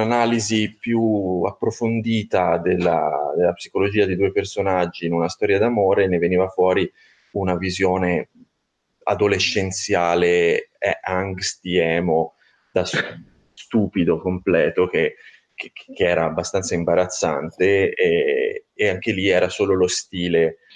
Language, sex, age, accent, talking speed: Italian, male, 30-49, native, 110 wpm